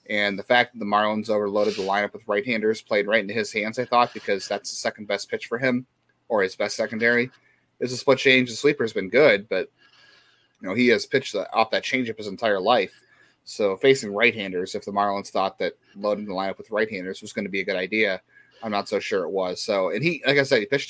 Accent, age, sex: American, 30-49, male